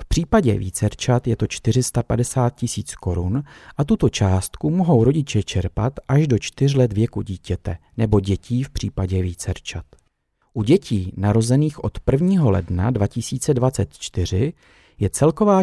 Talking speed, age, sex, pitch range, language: 130 wpm, 40-59, male, 95-130 Hz, Czech